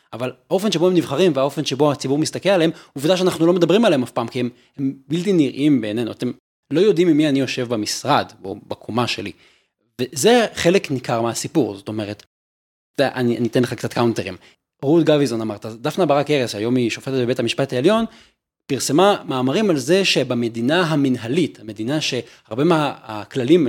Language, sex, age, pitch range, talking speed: Hebrew, male, 30-49, 120-175 Hz, 165 wpm